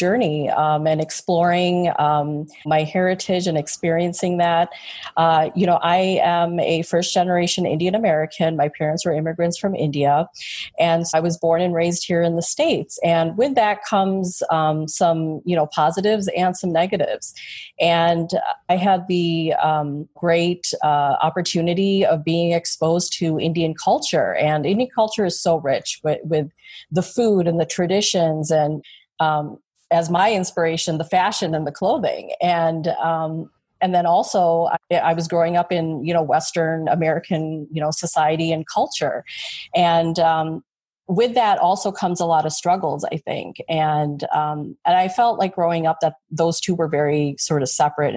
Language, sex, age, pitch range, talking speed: English, female, 30-49, 155-180 Hz, 165 wpm